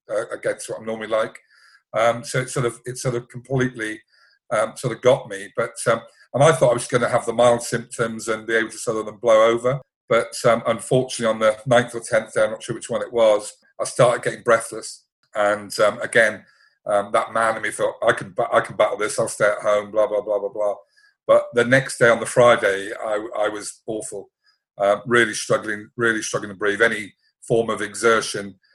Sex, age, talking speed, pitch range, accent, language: male, 40-59, 225 wpm, 105-120 Hz, British, English